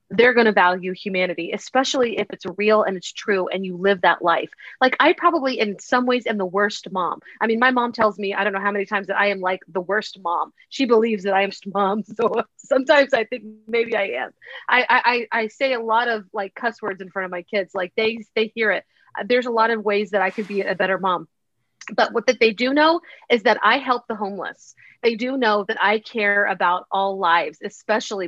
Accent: American